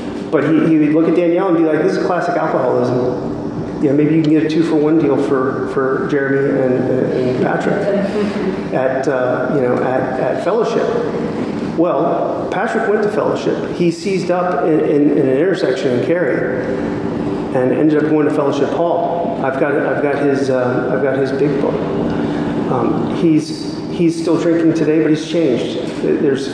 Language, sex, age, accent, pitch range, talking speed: English, male, 40-59, American, 130-160 Hz, 190 wpm